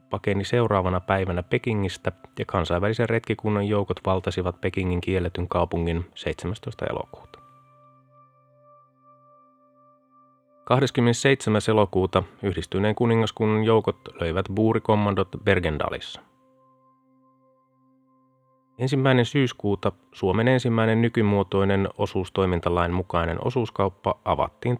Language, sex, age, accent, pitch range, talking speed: Finnish, male, 30-49, native, 90-120 Hz, 75 wpm